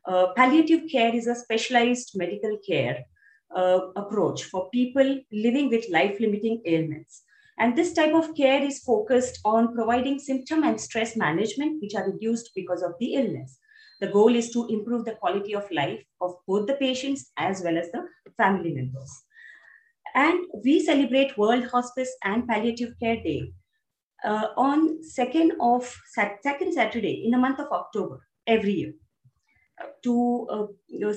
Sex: female